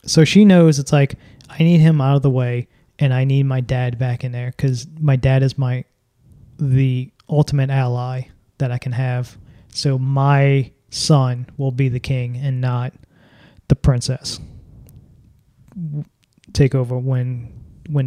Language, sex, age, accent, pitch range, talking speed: English, male, 20-39, American, 125-145 Hz, 155 wpm